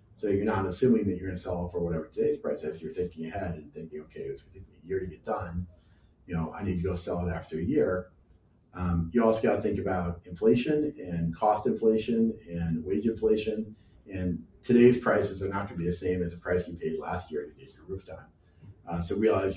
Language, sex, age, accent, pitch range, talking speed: English, male, 40-59, American, 85-110 Hz, 235 wpm